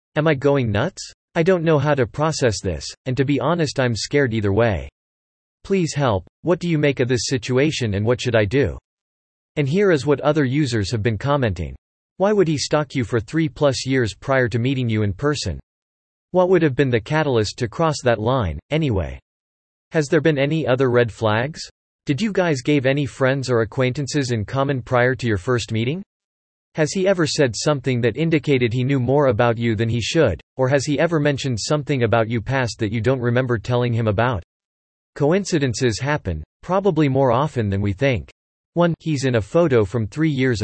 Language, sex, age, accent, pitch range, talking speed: English, male, 40-59, American, 110-150 Hz, 200 wpm